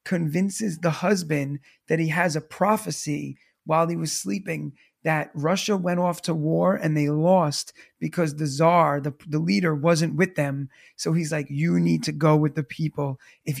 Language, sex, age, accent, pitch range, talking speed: English, male, 30-49, American, 150-170 Hz, 180 wpm